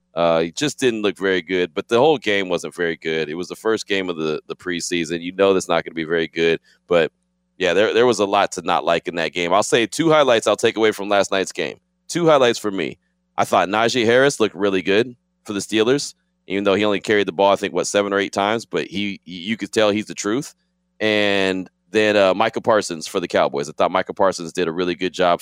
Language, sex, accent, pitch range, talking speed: English, male, American, 90-110 Hz, 260 wpm